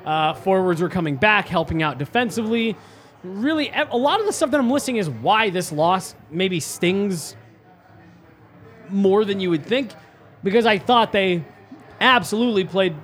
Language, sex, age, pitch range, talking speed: English, male, 20-39, 165-210 Hz, 155 wpm